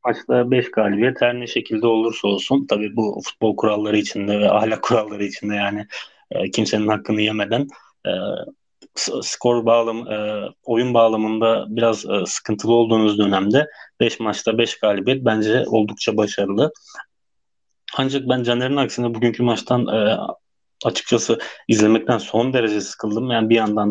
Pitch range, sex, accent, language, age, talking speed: 110-120 Hz, male, native, Turkish, 30-49, 140 wpm